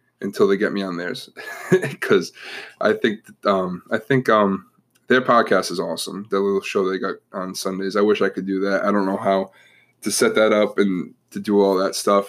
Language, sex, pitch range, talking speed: English, male, 95-110 Hz, 215 wpm